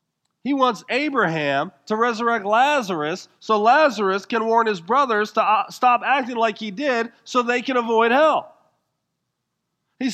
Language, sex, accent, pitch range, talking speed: English, male, American, 190-250 Hz, 140 wpm